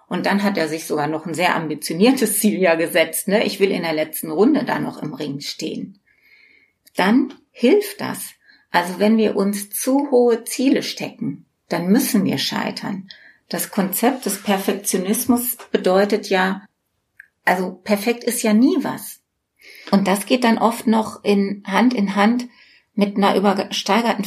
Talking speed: 160 wpm